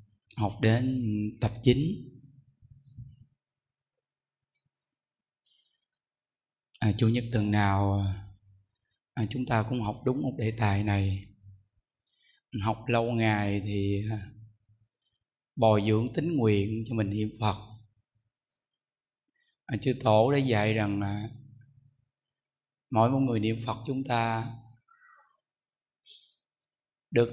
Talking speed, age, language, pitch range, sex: 105 wpm, 20-39, Vietnamese, 110-135 Hz, male